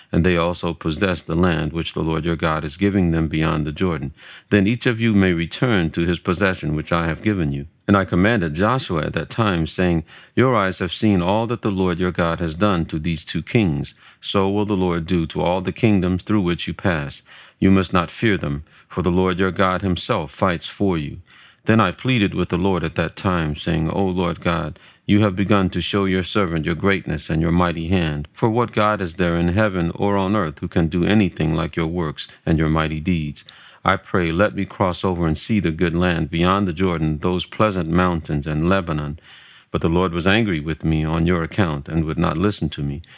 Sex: male